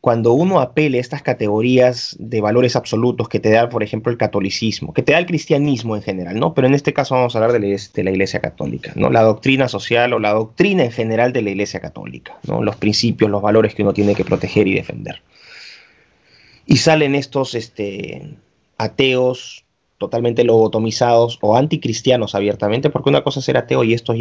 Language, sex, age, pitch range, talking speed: Spanish, male, 30-49, 105-125 Hz, 200 wpm